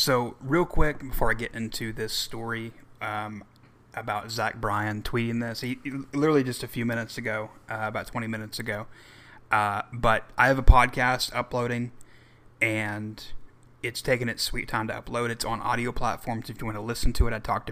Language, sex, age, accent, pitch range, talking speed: English, male, 30-49, American, 110-125 Hz, 185 wpm